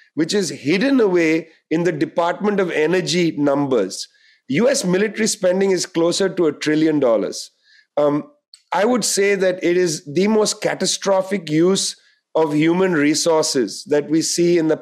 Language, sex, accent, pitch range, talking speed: English, male, Indian, 170-220 Hz, 150 wpm